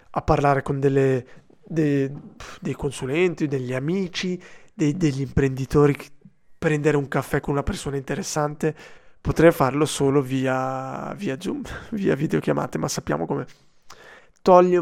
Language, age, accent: Italian, 20-39, native